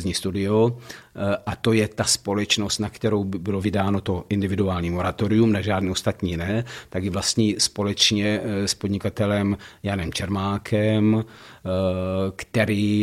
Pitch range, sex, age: 95-105 Hz, male, 50-69